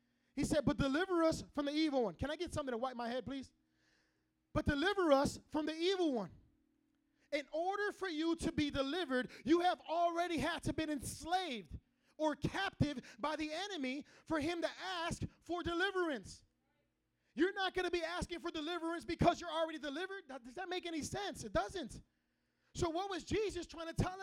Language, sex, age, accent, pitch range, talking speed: English, male, 30-49, American, 290-350 Hz, 190 wpm